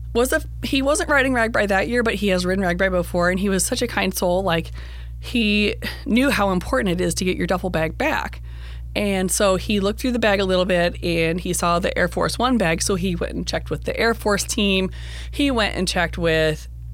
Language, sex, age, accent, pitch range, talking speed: English, female, 20-39, American, 165-205 Hz, 235 wpm